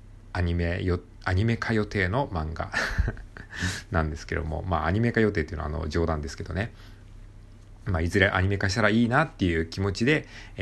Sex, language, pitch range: male, Japanese, 80-105 Hz